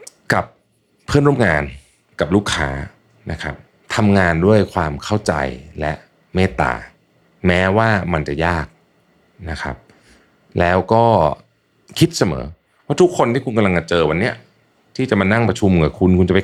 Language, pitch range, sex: Thai, 80-110 Hz, male